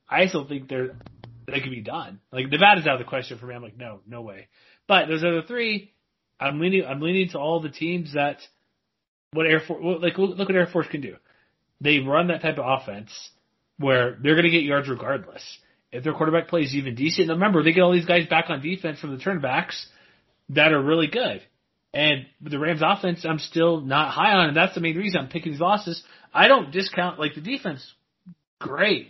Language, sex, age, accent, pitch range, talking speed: English, male, 30-49, American, 140-180 Hz, 220 wpm